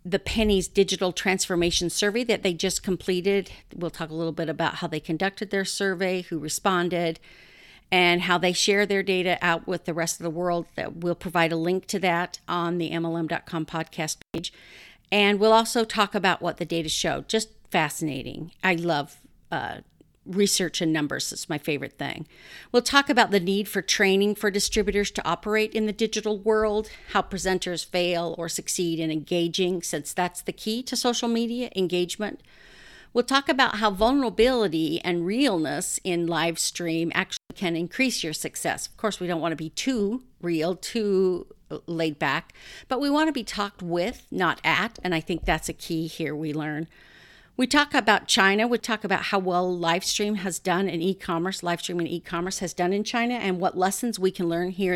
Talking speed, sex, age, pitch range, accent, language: 185 wpm, female, 50-69, 170-210 Hz, American, English